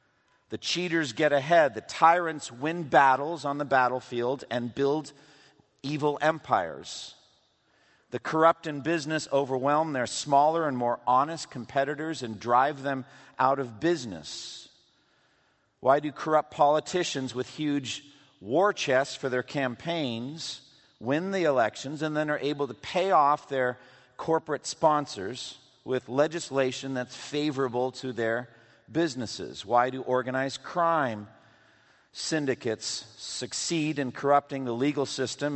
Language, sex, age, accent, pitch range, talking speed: English, male, 50-69, American, 125-150 Hz, 125 wpm